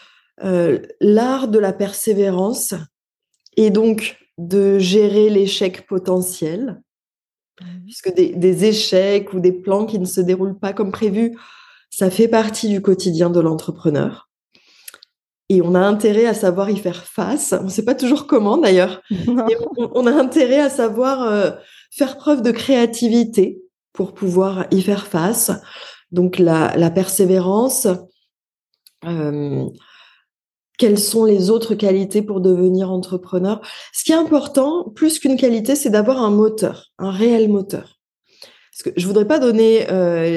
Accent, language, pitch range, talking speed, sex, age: French, French, 185-230 Hz, 150 wpm, female, 20-39